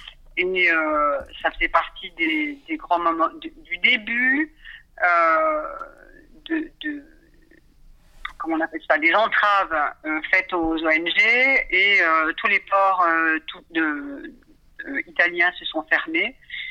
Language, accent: French, French